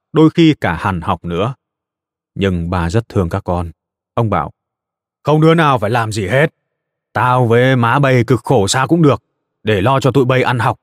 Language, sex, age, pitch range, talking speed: Vietnamese, male, 20-39, 95-135 Hz, 205 wpm